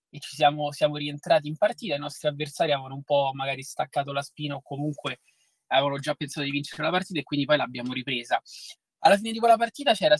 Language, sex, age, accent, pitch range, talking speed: Italian, male, 20-39, native, 140-165 Hz, 220 wpm